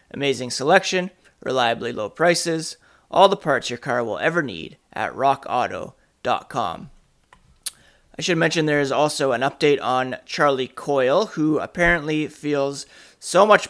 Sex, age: male, 30-49